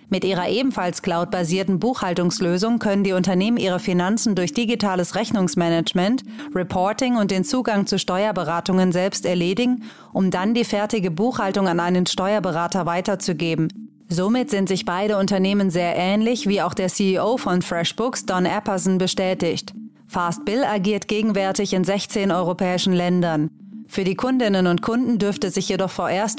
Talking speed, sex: 145 wpm, female